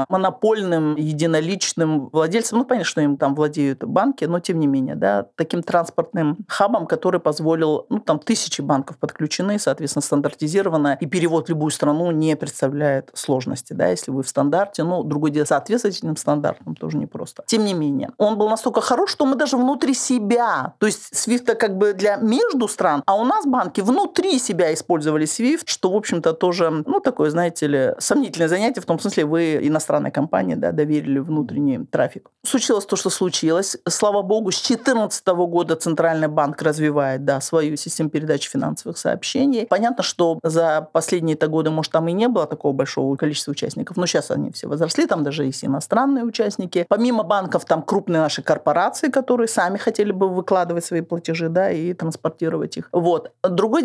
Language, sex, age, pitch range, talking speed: Russian, male, 40-59, 155-210 Hz, 175 wpm